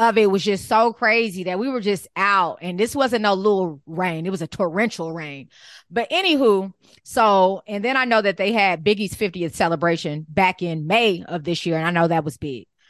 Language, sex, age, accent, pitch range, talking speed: English, female, 20-39, American, 180-220 Hz, 220 wpm